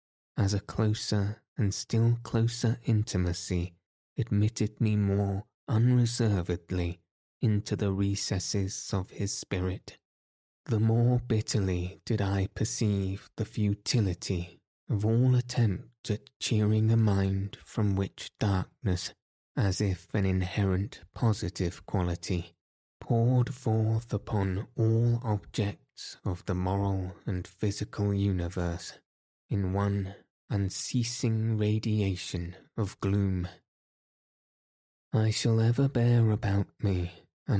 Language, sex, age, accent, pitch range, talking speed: English, male, 20-39, British, 95-110 Hz, 105 wpm